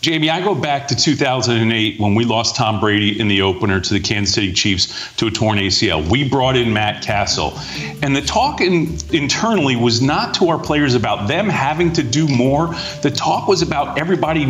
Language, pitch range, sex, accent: English, 120-170 Hz, male, American